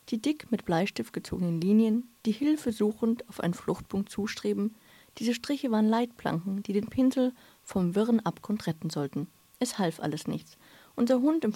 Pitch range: 195-240 Hz